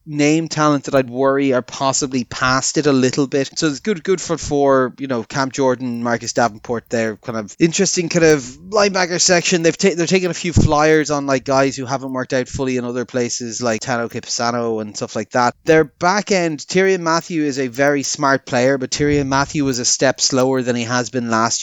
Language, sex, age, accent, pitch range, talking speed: English, male, 30-49, Irish, 125-155 Hz, 220 wpm